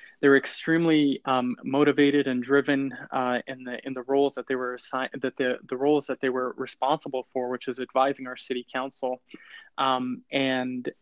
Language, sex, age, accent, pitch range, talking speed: English, male, 20-39, American, 130-155 Hz, 180 wpm